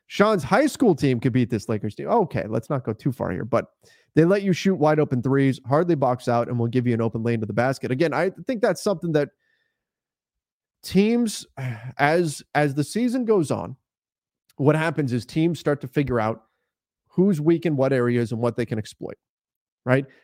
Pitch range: 125-160 Hz